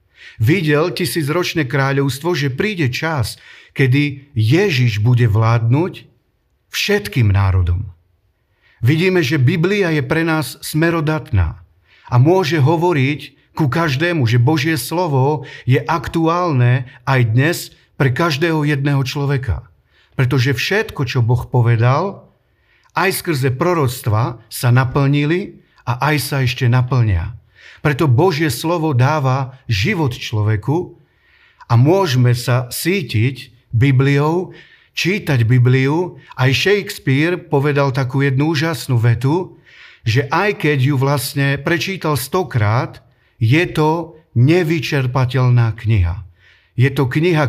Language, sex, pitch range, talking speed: Slovak, male, 120-160 Hz, 105 wpm